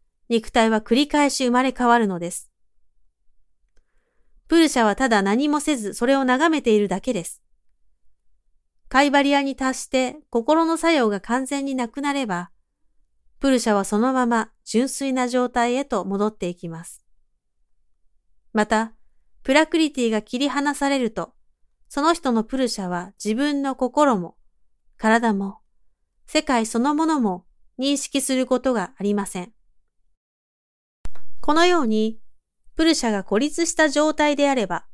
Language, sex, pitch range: Japanese, female, 185-280 Hz